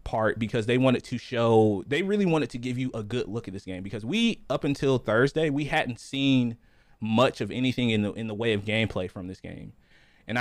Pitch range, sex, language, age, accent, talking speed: 105-130 Hz, male, English, 20-39, American, 230 wpm